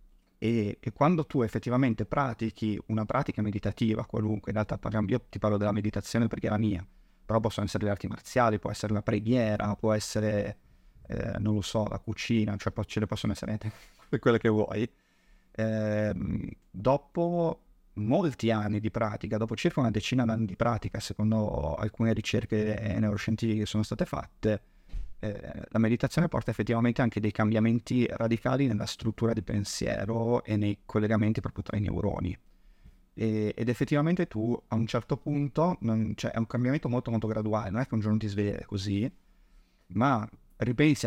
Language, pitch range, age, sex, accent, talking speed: Italian, 105-120 Hz, 30-49, male, native, 170 wpm